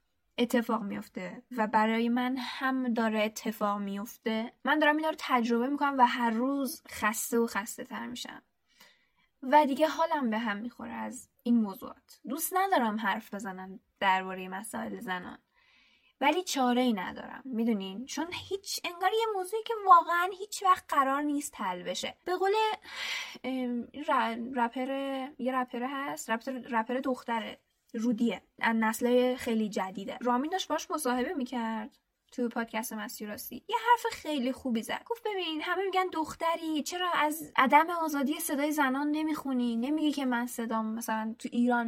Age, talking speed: 10-29, 145 wpm